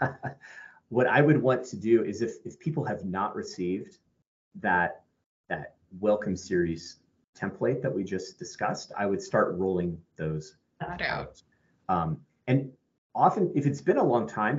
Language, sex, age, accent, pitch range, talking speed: English, male, 30-49, American, 85-110 Hz, 150 wpm